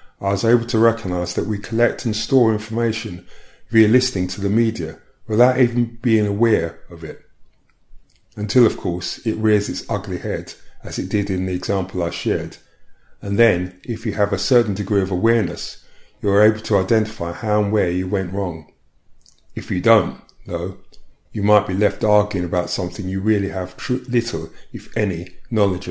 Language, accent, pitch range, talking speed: English, British, 95-115 Hz, 180 wpm